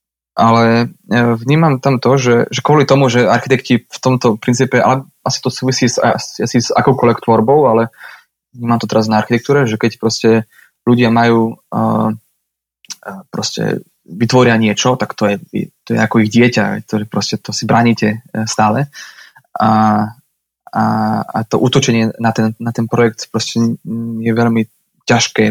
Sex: male